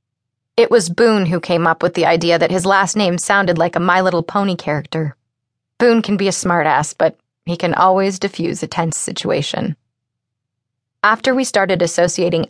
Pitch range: 145-190 Hz